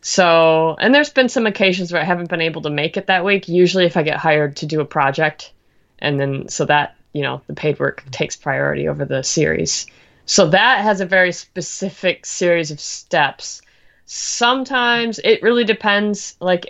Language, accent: English, American